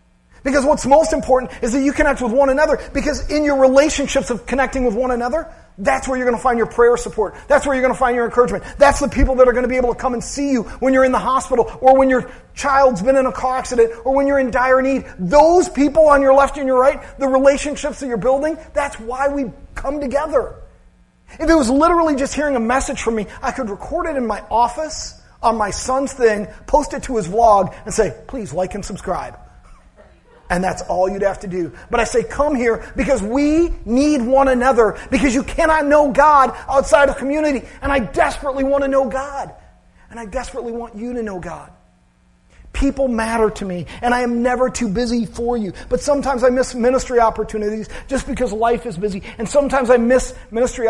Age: 40-59